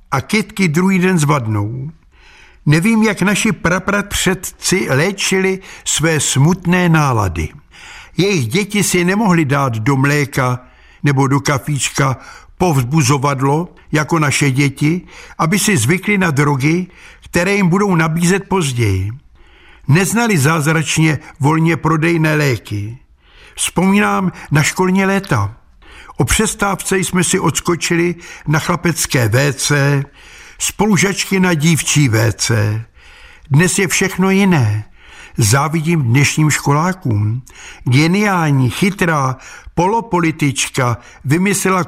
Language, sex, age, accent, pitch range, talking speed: Czech, male, 60-79, native, 140-190 Hz, 100 wpm